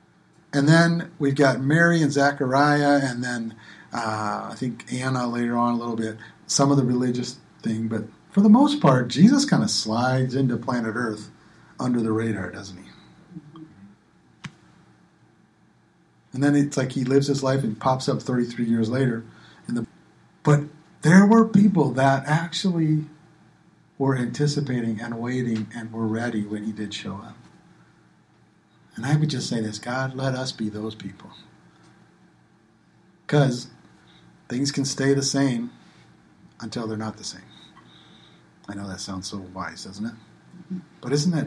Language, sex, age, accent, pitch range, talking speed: English, male, 50-69, American, 115-155 Hz, 155 wpm